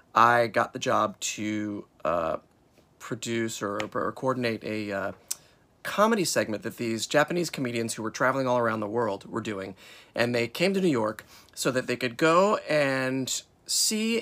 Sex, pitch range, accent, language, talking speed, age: male, 110-135 Hz, American, English, 170 wpm, 30-49